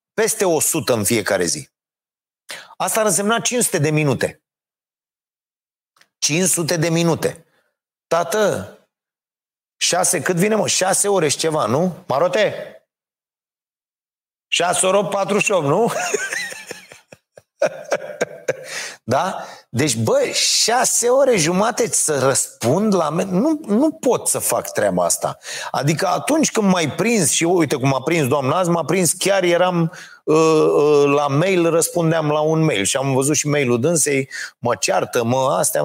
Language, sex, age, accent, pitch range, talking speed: Romanian, male, 30-49, native, 145-190 Hz, 135 wpm